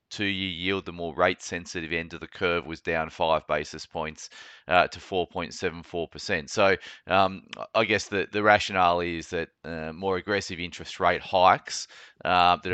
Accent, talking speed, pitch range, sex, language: Australian, 160 wpm, 80-95 Hz, male, English